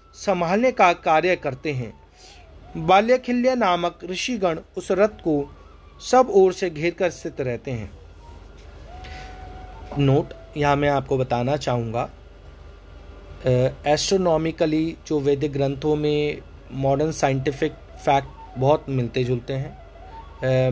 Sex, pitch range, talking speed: male, 100-155 Hz, 115 wpm